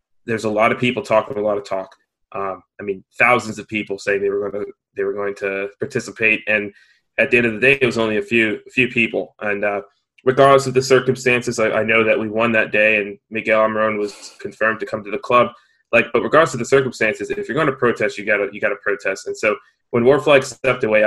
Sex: male